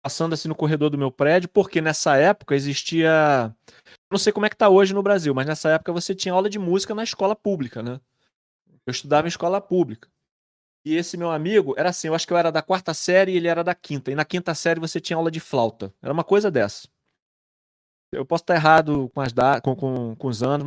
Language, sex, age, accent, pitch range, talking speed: Portuguese, male, 20-39, Brazilian, 145-195 Hz, 240 wpm